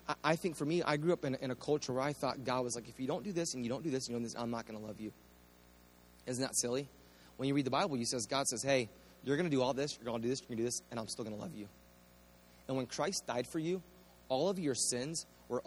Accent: American